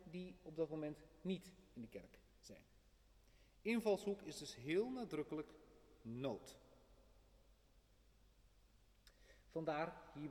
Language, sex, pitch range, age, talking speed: Dutch, male, 115-155 Hz, 40-59, 100 wpm